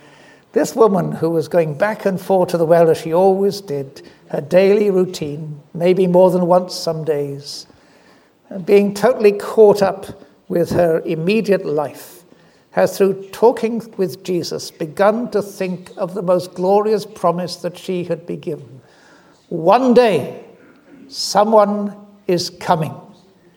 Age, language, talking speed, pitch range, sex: 60-79, English, 140 wpm, 170-210 Hz, male